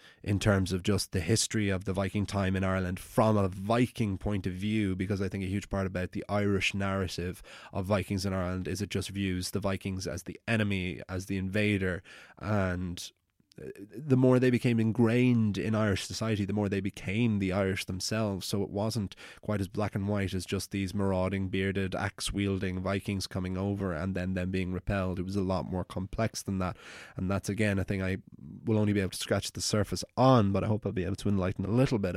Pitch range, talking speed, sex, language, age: 95-110 Hz, 215 wpm, male, English, 20-39